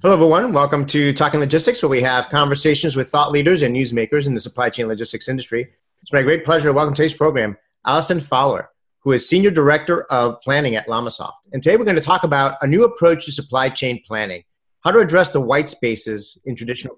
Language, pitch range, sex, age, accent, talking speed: English, 125-155 Hz, male, 30-49, American, 220 wpm